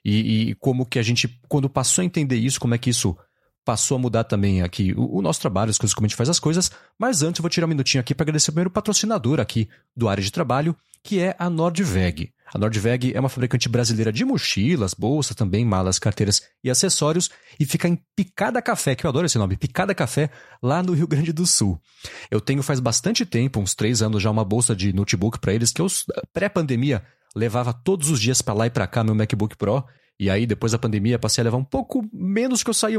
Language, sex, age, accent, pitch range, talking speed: Portuguese, male, 30-49, Brazilian, 115-160 Hz, 235 wpm